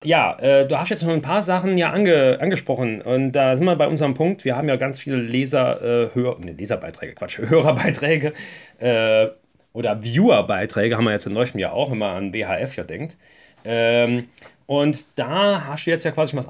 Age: 30-49